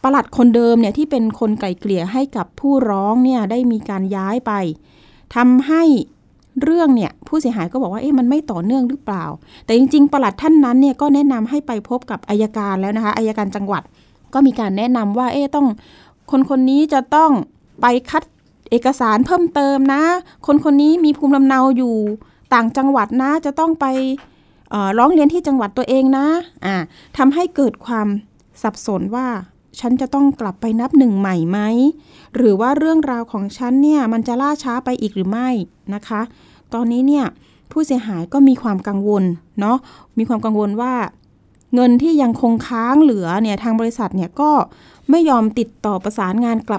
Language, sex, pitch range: Thai, female, 215-275 Hz